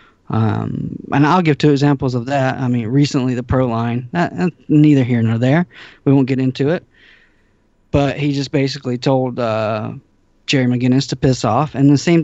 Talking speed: 185 wpm